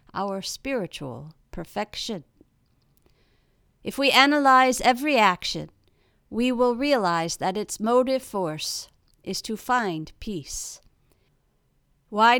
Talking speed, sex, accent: 95 wpm, female, American